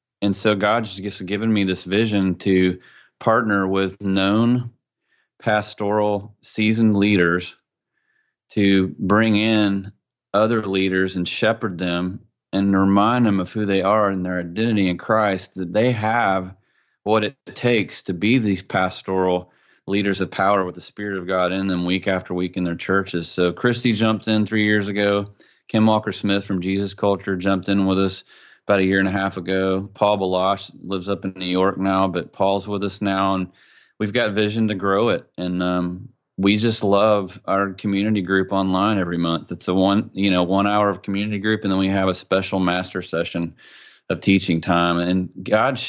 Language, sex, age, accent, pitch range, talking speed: English, male, 30-49, American, 95-105 Hz, 180 wpm